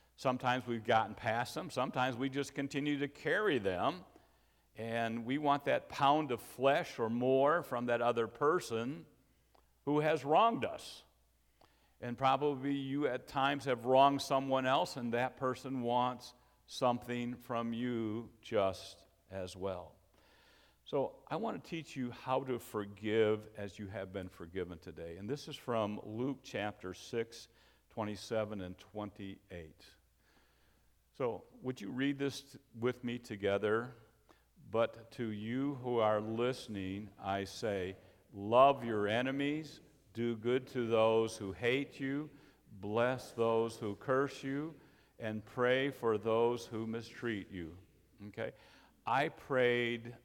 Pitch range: 100-130 Hz